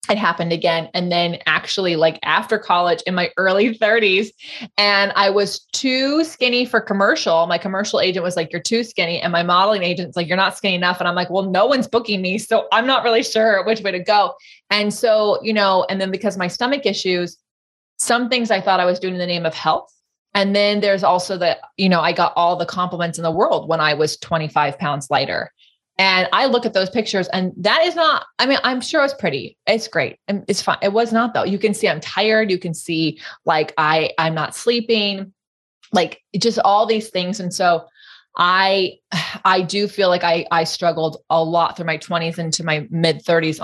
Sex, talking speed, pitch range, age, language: female, 220 wpm, 170-205 Hz, 20-39, English